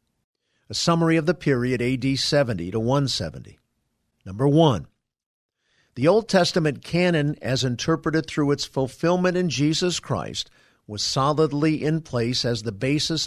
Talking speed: 130 wpm